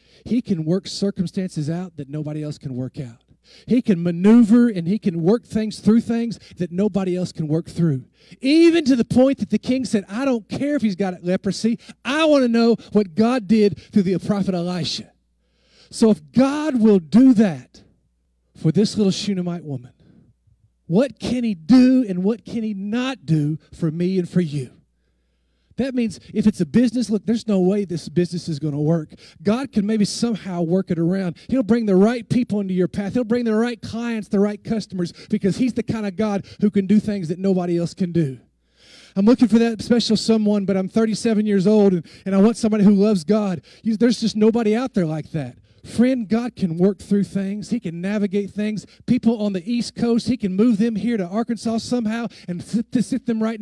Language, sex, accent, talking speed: English, male, American, 210 wpm